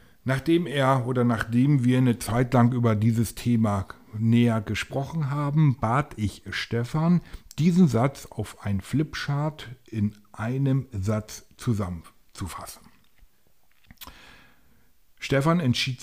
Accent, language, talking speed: German, German, 105 wpm